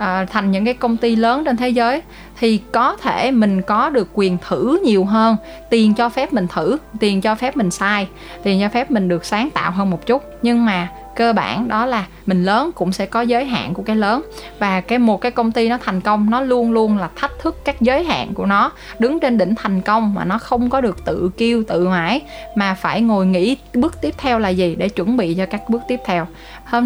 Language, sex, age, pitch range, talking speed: Vietnamese, female, 20-39, 190-240 Hz, 240 wpm